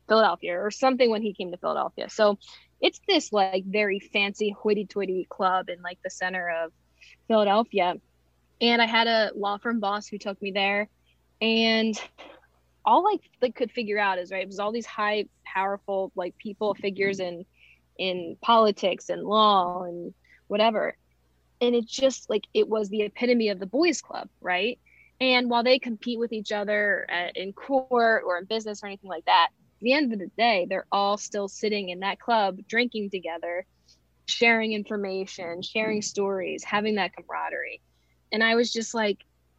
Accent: American